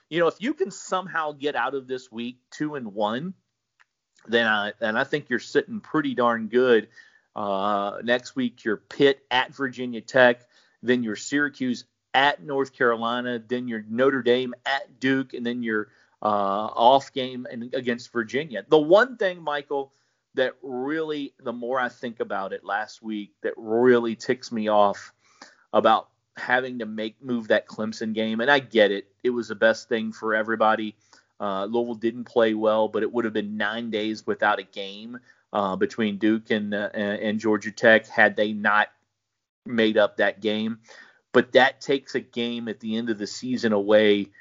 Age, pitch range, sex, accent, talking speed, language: 40-59, 110-135 Hz, male, American, 180 wpm, English